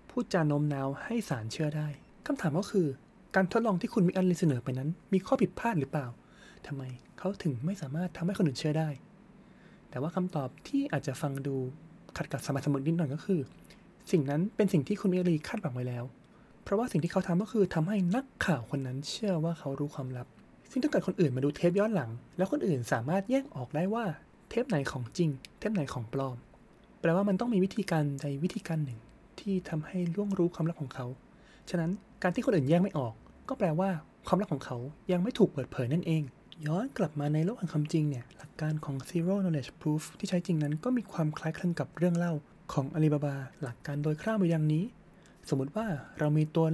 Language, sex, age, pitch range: Thai, male, 20-39, 145-190 Hz